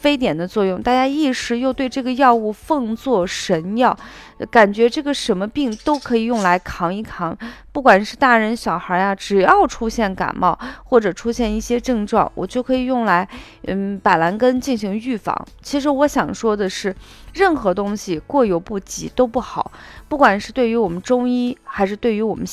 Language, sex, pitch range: Chinese, female, 200-255 Hz